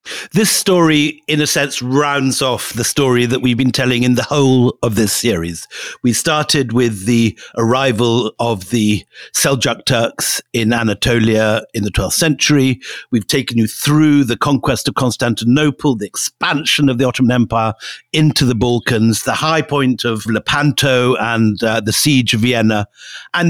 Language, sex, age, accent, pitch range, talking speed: English, male, 50-69, British, 115-145 Hz, 160 wpm